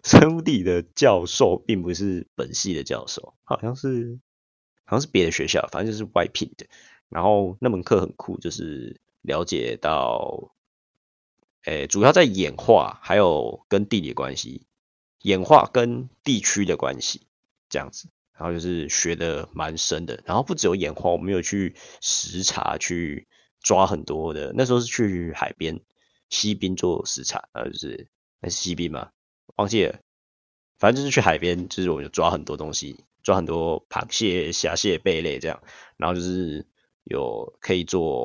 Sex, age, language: male, 30-49, Chinese